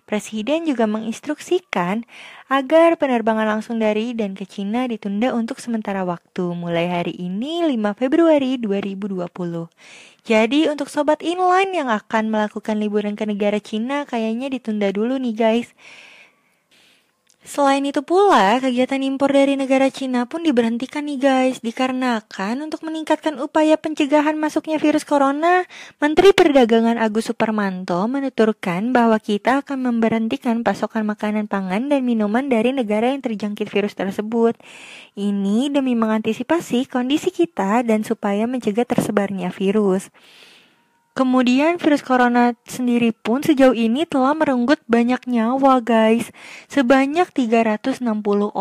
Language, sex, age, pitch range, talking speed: Indonesian, female, 20-39, 215-275 Hz, 125 wpm